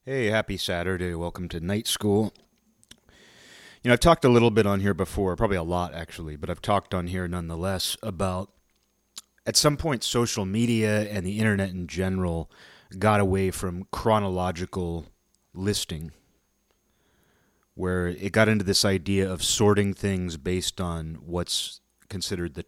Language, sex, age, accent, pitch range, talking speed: English, male, 30-49, American, 90-105 Hz, 150 wpm